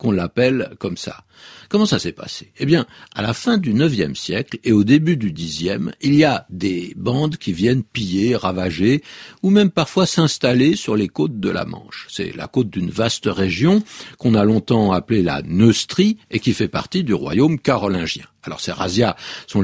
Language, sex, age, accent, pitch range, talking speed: French, male, 60-79, French, 105-170 Hz, 195 wpm